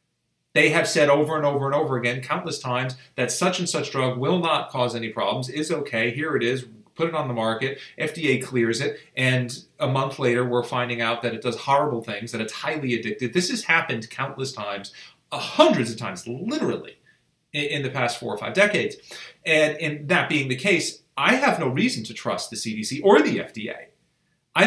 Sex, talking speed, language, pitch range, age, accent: male, 205 wpm, English, 125-155 Hz, 30-49, American